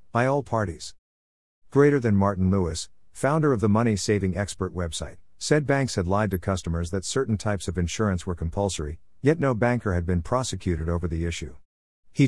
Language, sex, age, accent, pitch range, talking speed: English, male, 50-69, American, 90-120 Hz, 175 wpm